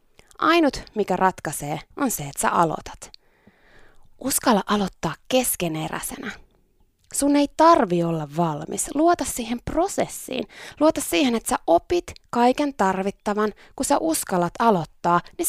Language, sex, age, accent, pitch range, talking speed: Finnish, female, 20-39, native, 175-275 Hz, 120 wpm